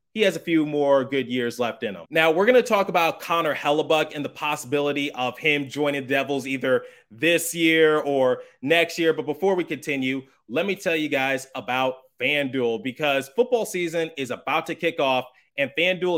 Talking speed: 195 wpm